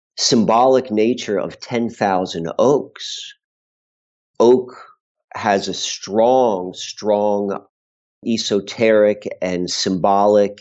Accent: American